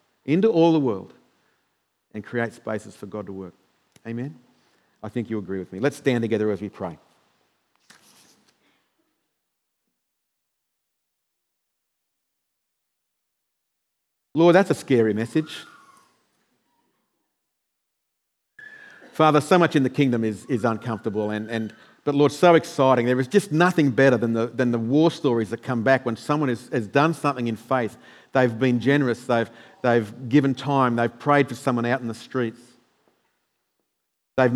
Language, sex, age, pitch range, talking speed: English, male, 50-69, 115-140 Hz, 140 wpm